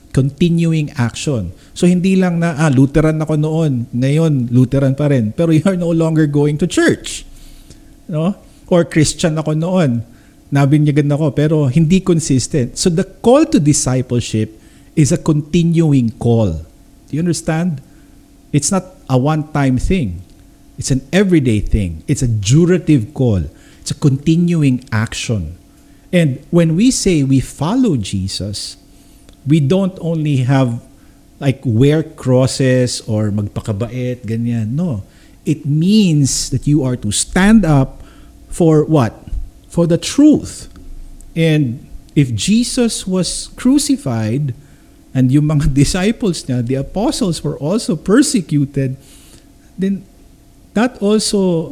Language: Filipino